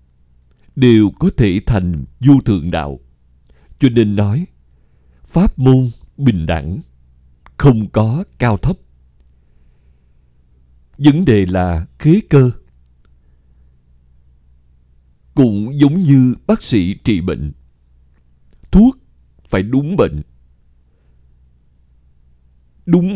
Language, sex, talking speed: Vietnamese, male, 90 wpm